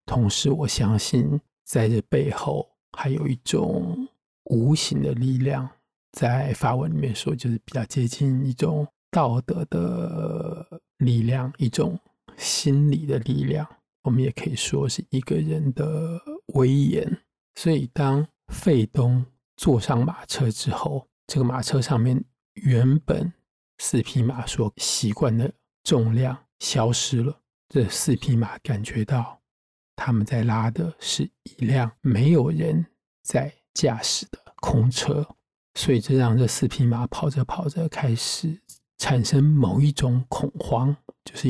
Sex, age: male, 50-69